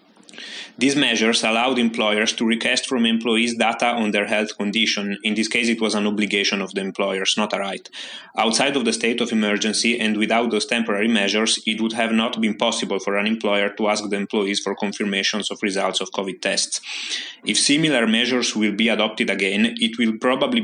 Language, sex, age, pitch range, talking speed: German, male, 20-39, 100-115 Hz, 195 wpm